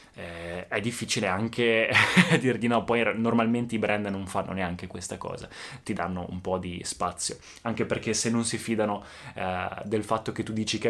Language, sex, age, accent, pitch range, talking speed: Italian, male, 20-39, native, 110-140 Hz, 180 wpm